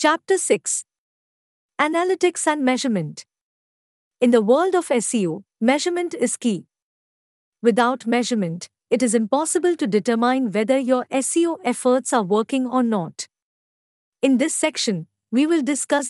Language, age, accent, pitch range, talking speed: English, 50-69, Indian, 210-280 Hz, 125 wpm